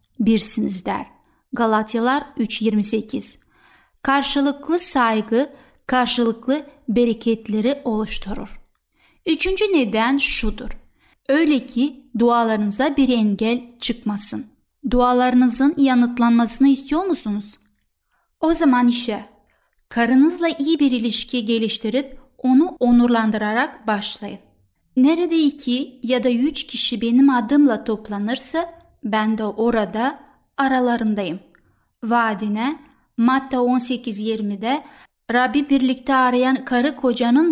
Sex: female